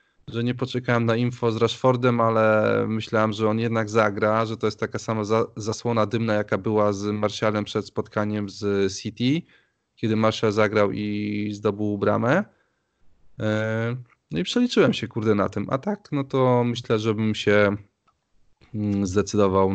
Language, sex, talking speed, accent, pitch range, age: Polish, male, 150 wpm, native, 100-120 Hz, 20-39